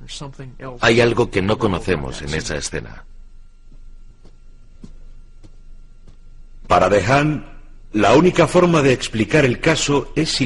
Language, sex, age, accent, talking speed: Spanish, male, 60-79, Spanish, 110 wpm